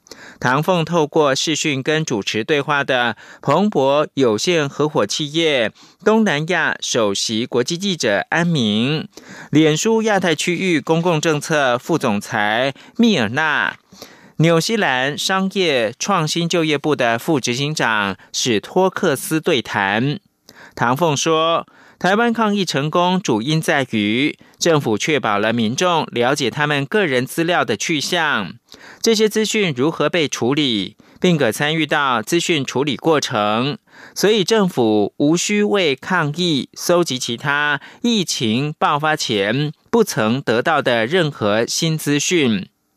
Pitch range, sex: 130-185 Hz, male